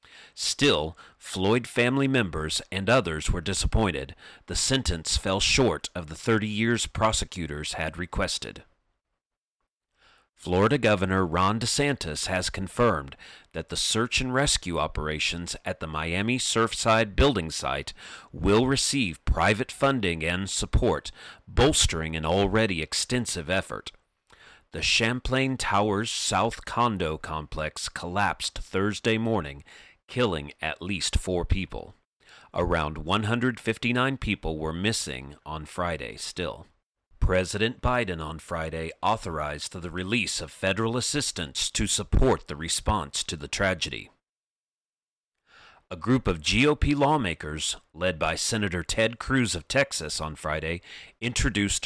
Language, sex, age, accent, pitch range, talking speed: English, male, 40-59, American, 80-115 Hz, 120 wpm